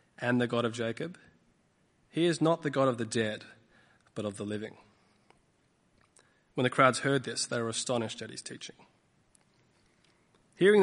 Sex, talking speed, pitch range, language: male, 160 wpm, 110-135 Hz, English